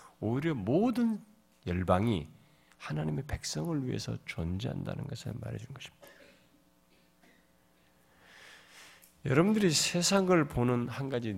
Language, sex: Korean, male